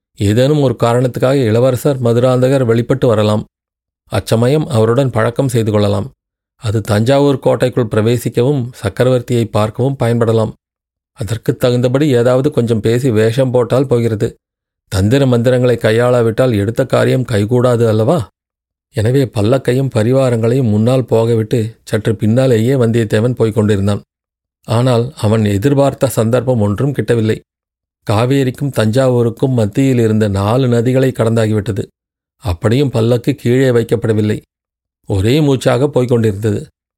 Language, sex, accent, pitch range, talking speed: Tamil, male, native, 110-130 Hz, 100 wpm